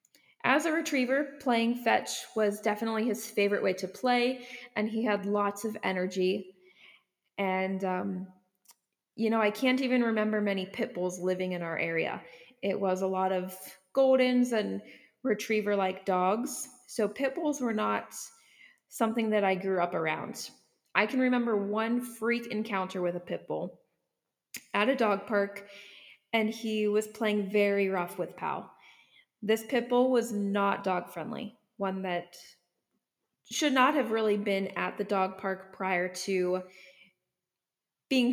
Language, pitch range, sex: English, 190-235 Hz, female